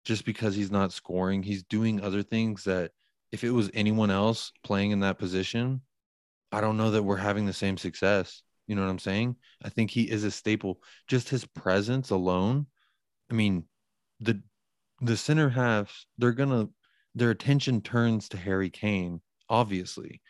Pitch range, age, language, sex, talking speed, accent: 95-115 Hz, 30-49, English, male, 170 wpm, American